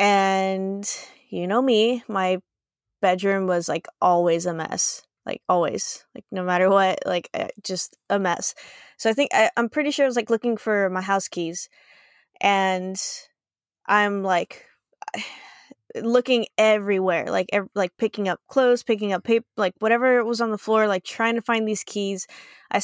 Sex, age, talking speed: female, 10-29, 160 wpm